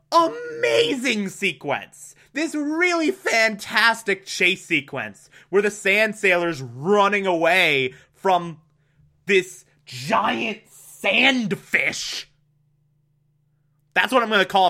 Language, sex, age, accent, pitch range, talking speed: English, male, 20-39, American, 145-175 Hz, 95 wpm